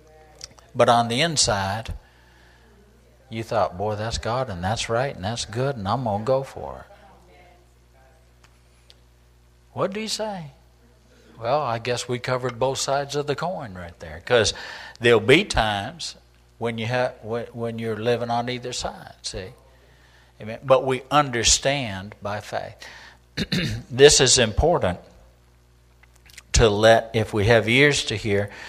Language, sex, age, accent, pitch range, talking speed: English, male, 60-79, American, 85-130 Hz, 140 wpm